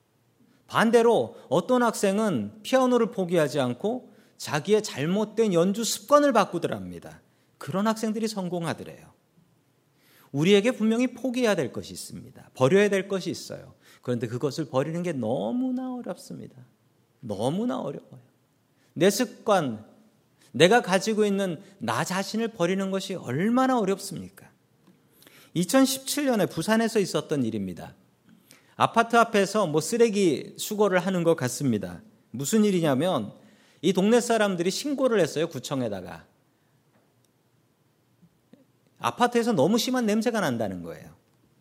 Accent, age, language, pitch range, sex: native, 40-59, Korean, 135-220 Hz, male